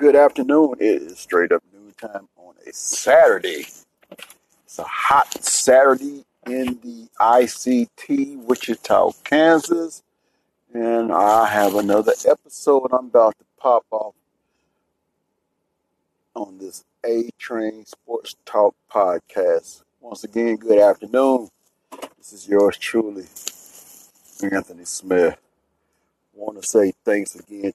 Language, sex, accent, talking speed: English, male, American, 110 wpm